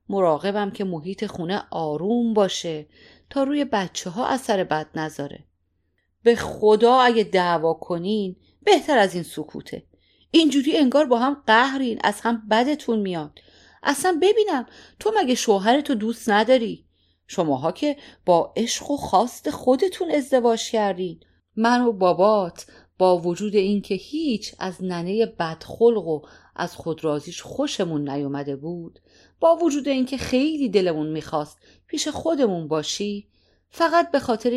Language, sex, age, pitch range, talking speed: Persian, female, 40-59, 160-235 Hz, 130 wpm